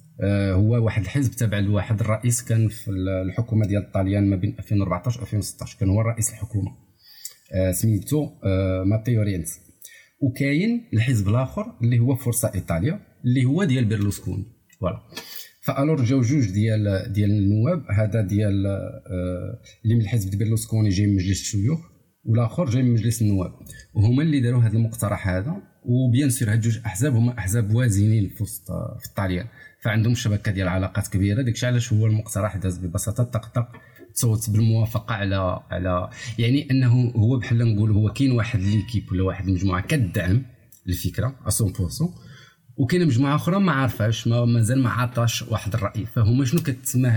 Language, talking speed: Arabic, 150 wpm